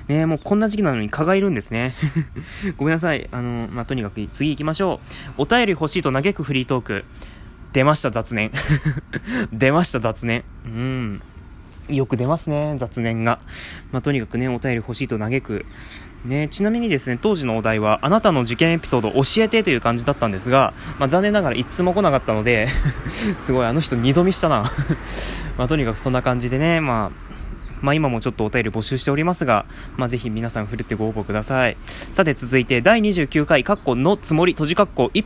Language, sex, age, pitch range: Japanese, male, 20-39, 115-155 Hz